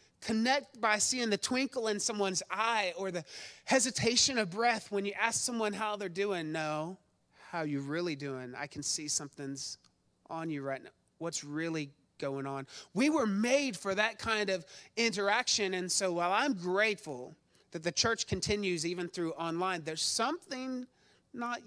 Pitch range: 155-210 Hz